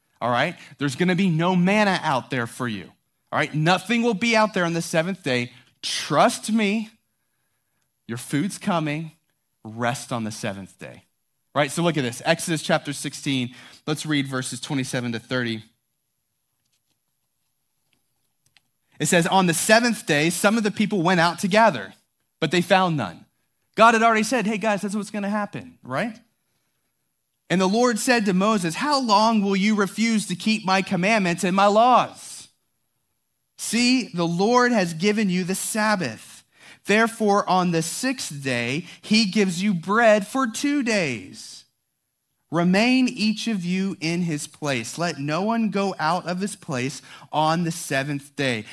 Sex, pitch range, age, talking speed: male, 135-210 Hz, 30-49, 165 wpm